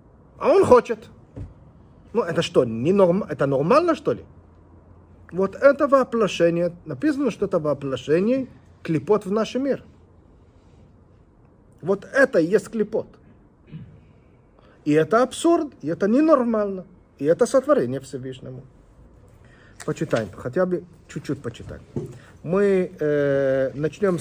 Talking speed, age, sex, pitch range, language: 110 wpm, 40-59, male, 130-200 Hz, Russian